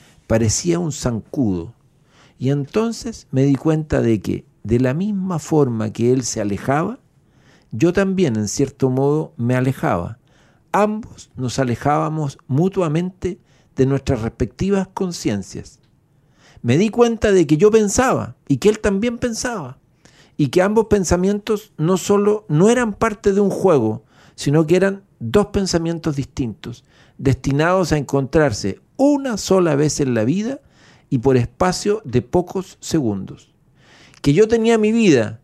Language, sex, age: Spanish, male, 50-69